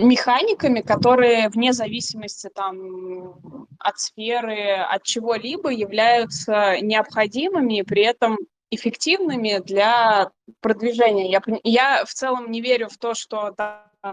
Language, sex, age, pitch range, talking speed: Russian, female, 20-39, 200-240 Hz, 110 wpm